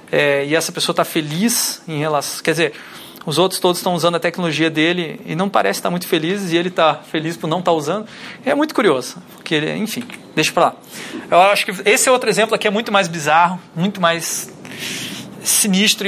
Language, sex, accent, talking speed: Portuguese, male, Brazilian, 215 wpm